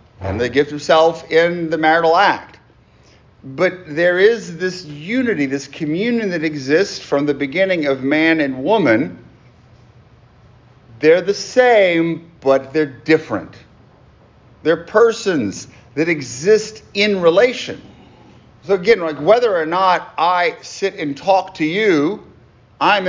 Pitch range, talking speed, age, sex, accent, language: 135-185 Hz, 125 wpm, 40-59, male, American, English